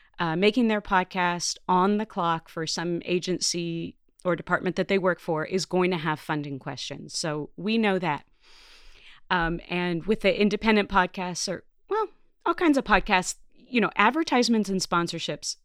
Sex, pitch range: female, 160-210 Hz